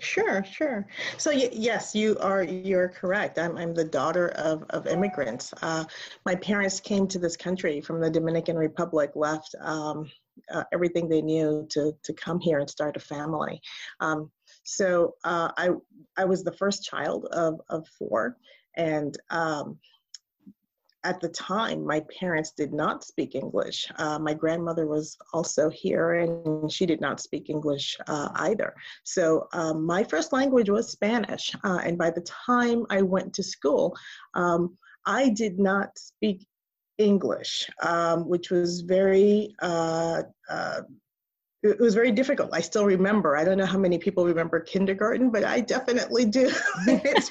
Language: English